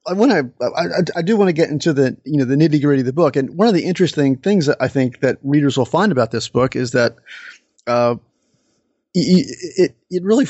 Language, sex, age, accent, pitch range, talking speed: English, male, 30-49, American, 130-160 Hz, 230 wpm